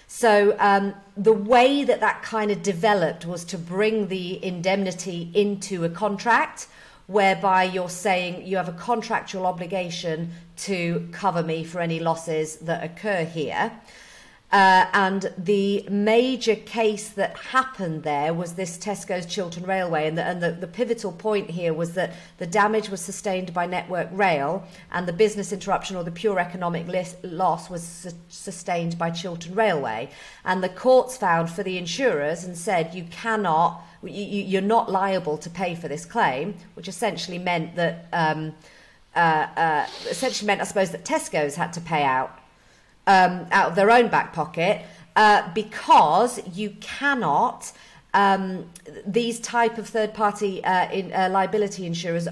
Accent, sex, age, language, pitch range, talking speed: British, female, 40-59, English, 170-205 Hz, 155 wpm